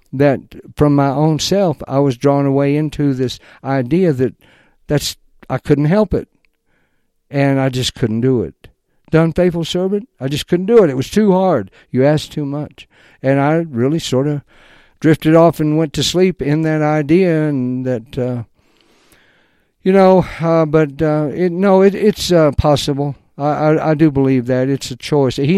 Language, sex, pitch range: English, male, 125-155 Hz